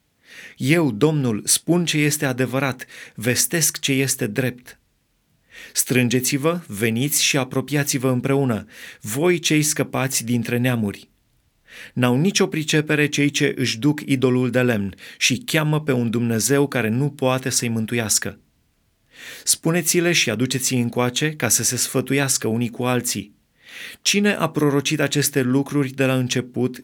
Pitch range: 120-150 Hz